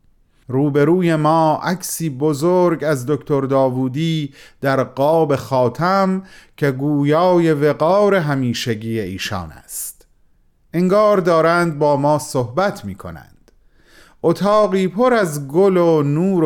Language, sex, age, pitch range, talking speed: Persian, male, 30-49, 130-180 Hz, 105 wpm